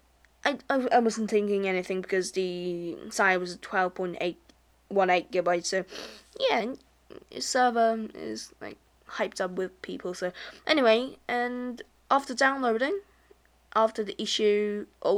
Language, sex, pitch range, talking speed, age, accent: English, female, 190-260 Hz, 110 wpm, 10-29, British